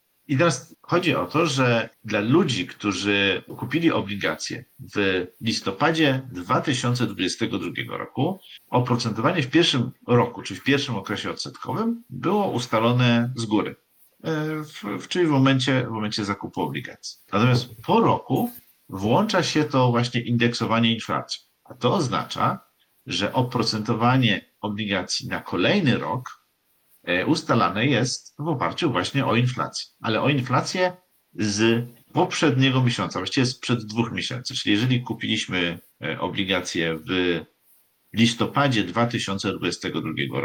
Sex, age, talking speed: male, 50-69, 115 wpm